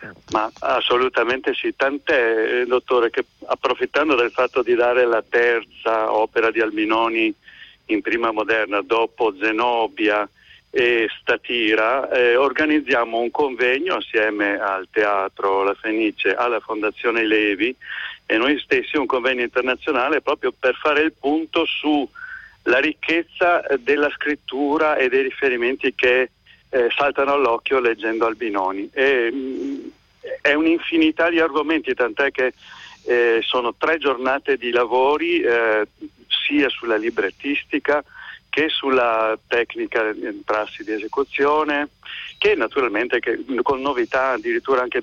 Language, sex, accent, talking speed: Italian, male, native, 120 wpm